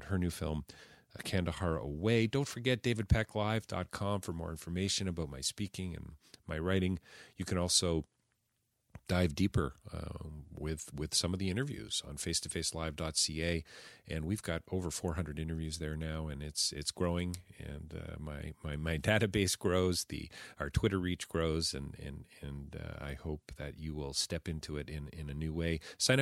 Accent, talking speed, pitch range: American, 175 wpm, 75-100 Hz